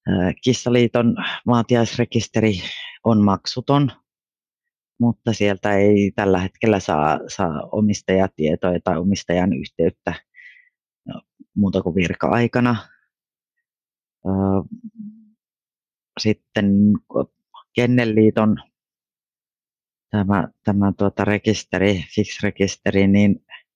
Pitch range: 95-115 Hz